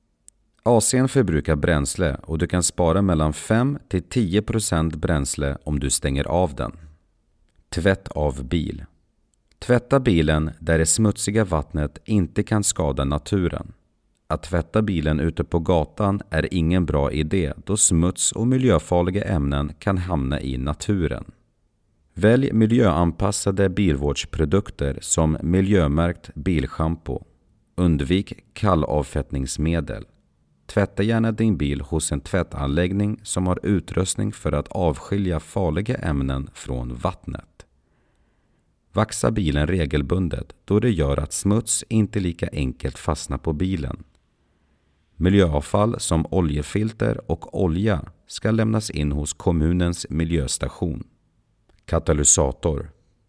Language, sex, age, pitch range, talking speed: Swedish, male, 40-59, 75-100 Hz, 110 wpm